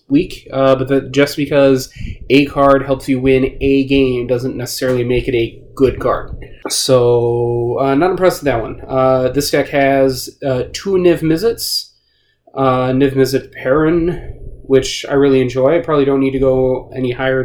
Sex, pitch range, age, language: male, 120-135 Hz, 30-49, English